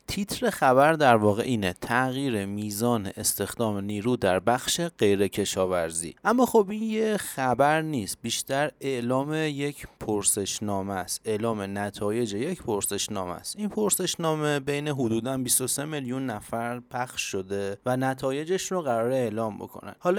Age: 30-49